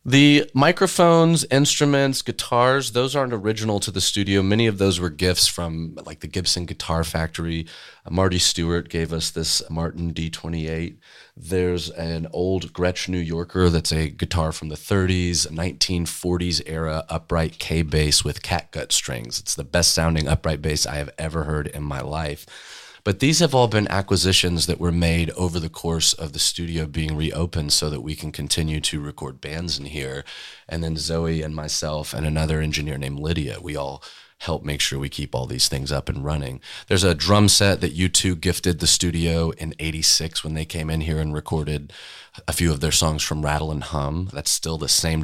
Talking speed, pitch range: 190 wpm, 75-95 Hz